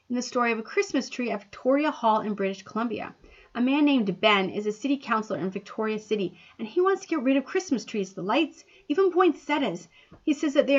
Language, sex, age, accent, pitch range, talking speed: English, female, 30-49, American, 225-295 Hz, 230 wpm